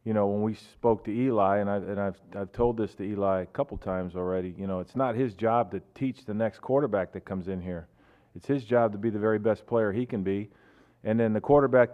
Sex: male